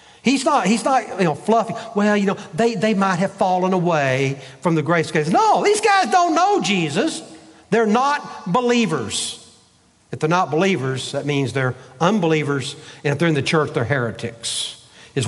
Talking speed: 175 wpm